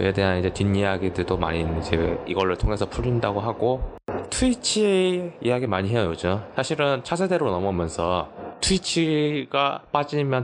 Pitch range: 90-120 Hz